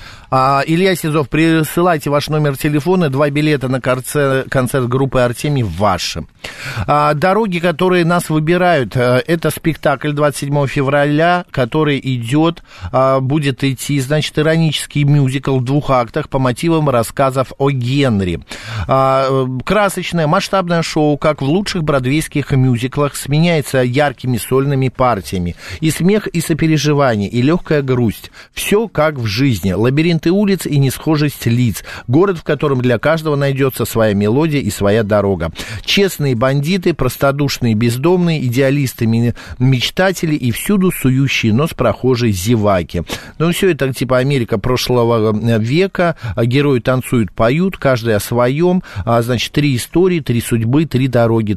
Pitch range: 120-155 Hz